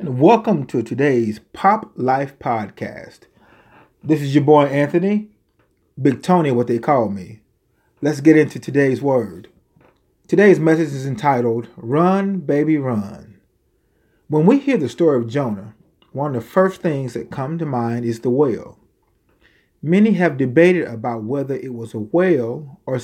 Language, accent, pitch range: English, American, 120-170 Hz